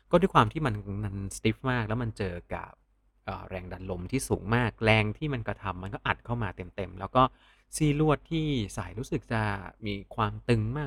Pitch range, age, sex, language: 100-125 Hz, 30-49, male, Thai